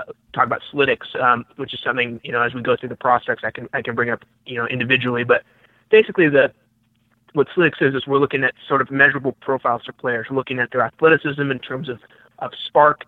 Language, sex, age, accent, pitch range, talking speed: English, male, 20-39, American, 120-140 Hz, 230 wpm